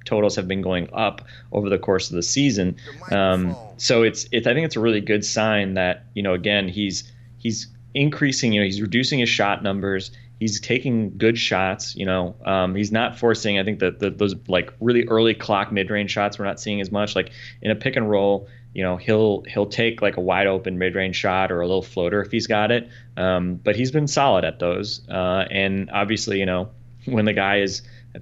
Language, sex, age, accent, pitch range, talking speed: English, male, 20-39, American, 95-115 Hz, 220 wpm